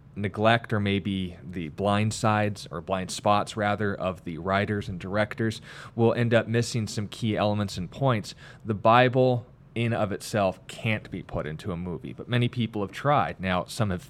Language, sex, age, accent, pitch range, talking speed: English, male, 20-39, American, 100-125 Hz, 185 wpm